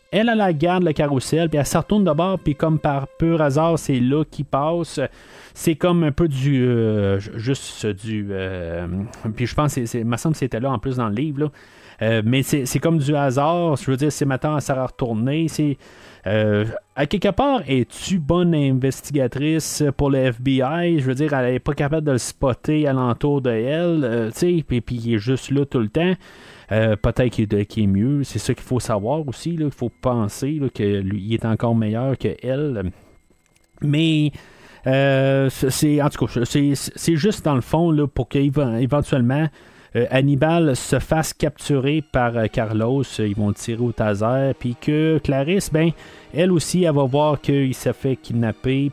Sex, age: male, 30-49